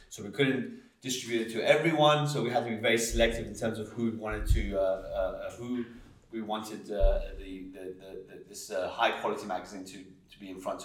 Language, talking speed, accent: English, 225 wpm, British